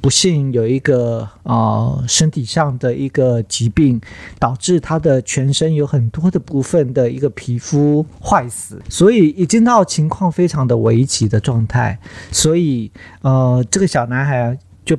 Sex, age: male, 50-69